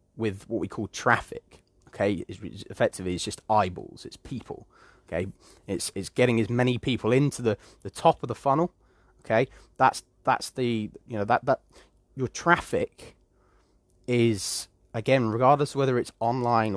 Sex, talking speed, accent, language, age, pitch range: male, 160 wpm, British, English, 30-49, 100-120 Hz